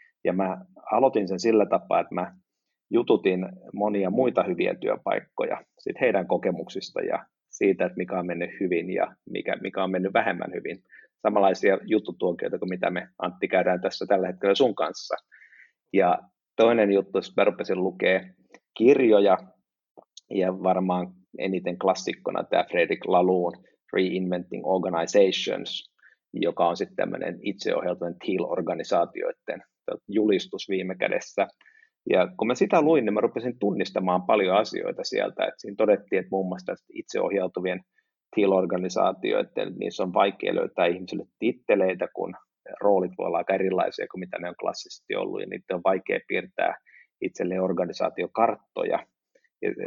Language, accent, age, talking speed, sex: Finnish, native, 30-49, 135 wpm, male